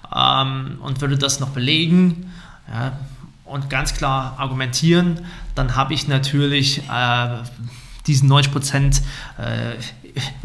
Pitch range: 130-155 Hz